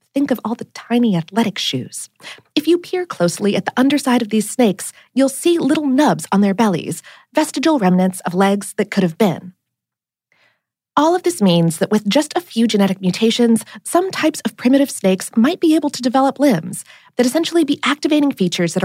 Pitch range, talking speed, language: 195-280 Hz, 190 wpm, English